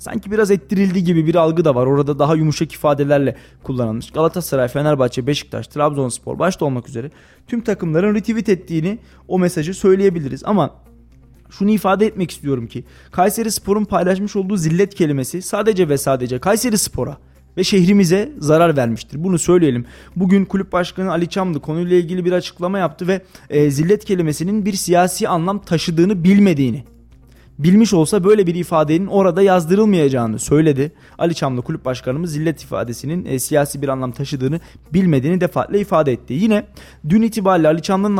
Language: Turkish